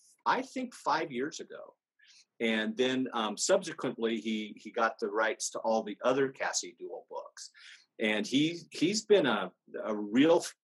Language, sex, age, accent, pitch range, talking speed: English, male, 40-59, American, 110-155 Hz, 160 wpm